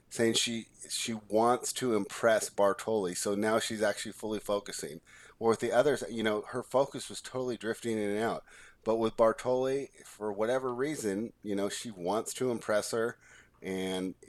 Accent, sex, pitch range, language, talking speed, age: American, male, 105-120 Hz, English, 175 wpm, 30-49